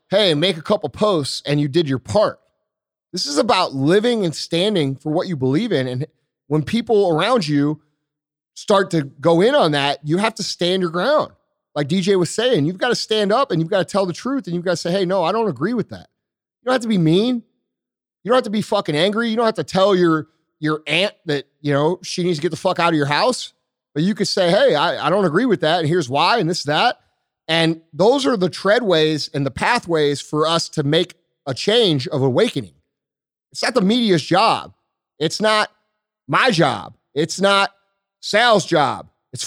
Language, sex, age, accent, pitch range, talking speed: English, male, 30-49, American, 150-210 Hz, 225 wpm